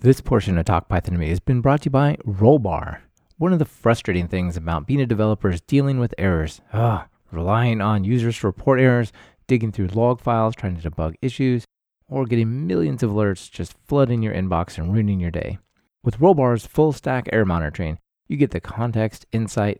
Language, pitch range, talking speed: English, 95-130 Hz, 200 wpm